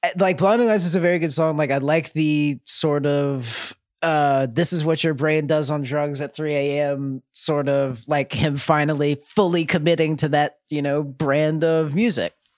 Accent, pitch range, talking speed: American, 145-190 Hz, 195 wpm